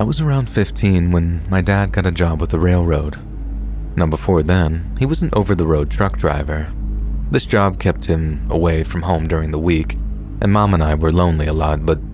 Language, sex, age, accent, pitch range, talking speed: English, male, 30-49, American, 75-95 Hz, 205 wpm